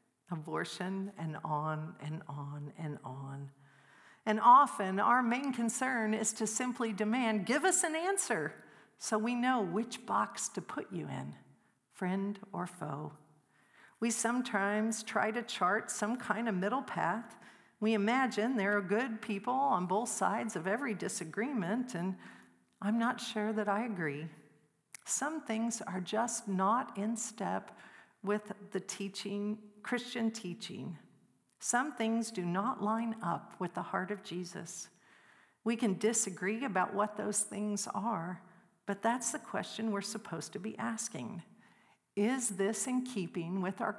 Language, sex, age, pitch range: English, female, 50-69, 185-230 Hz